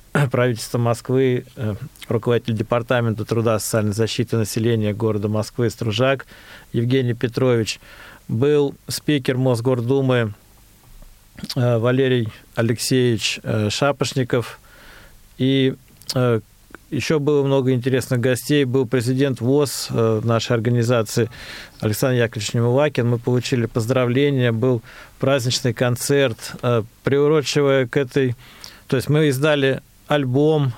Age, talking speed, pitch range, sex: 40-59, 90 wpm, 115-135 Hz, male